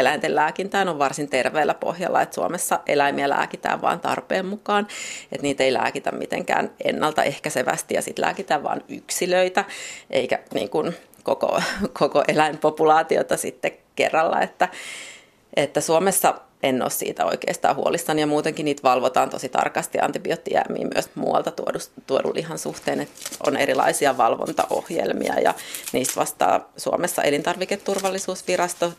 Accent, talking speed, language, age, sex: native, 125 wpm, Finnish, 30-49, female